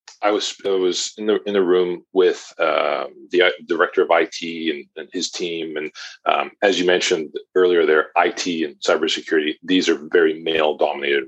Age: 40-59